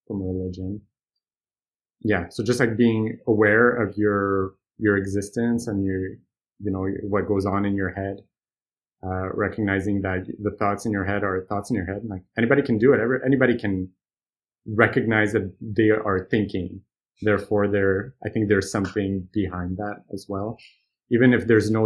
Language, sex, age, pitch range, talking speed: English, male, 30-49, 95-115 Hz, 170 wpm